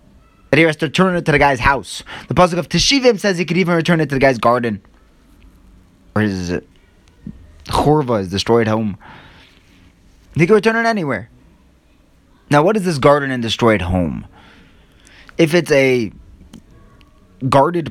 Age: 20-39